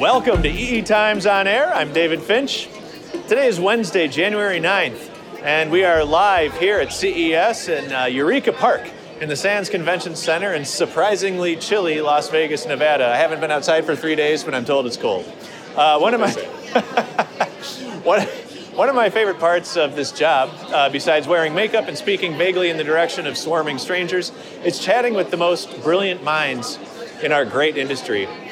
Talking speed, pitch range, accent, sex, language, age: 180 wpm, 150-185 Hz, American, male, English, 30-49